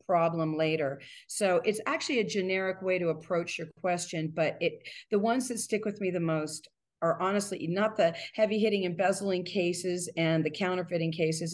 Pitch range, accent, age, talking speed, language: 160-185 Hz, American, 40-59, 175 wpm, English